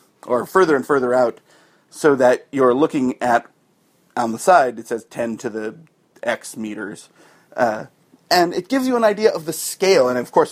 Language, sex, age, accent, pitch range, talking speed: English, male, 40-59, American, 125-200 Hz, 190 wpm